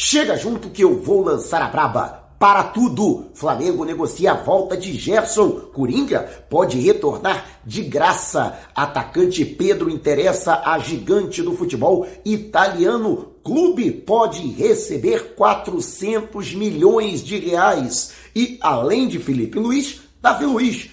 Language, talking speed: Portuguese, 125 wpm